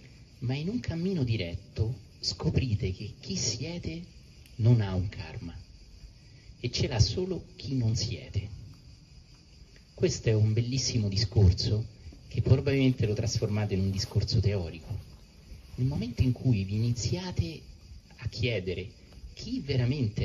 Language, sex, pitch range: Italian, male, 95-120 Hz